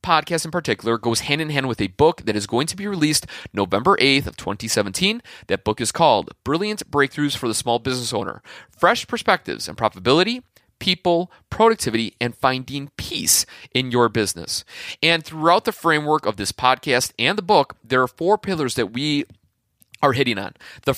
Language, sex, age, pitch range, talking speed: English, male, 30-49, 120-155 Hz, 185 wpm